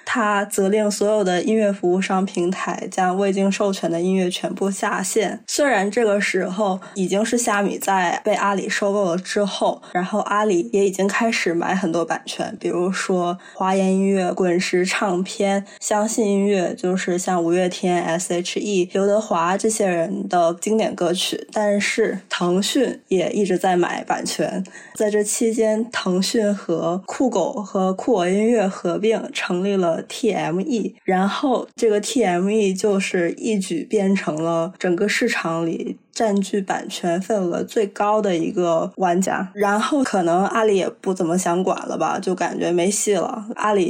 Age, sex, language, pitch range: 20-39, female, Chinese, 175-205 Hz